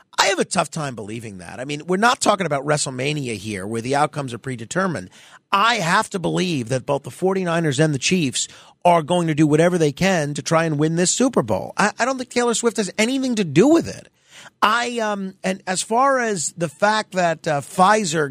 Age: 40-59